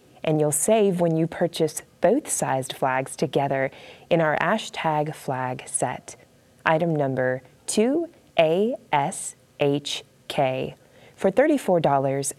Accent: American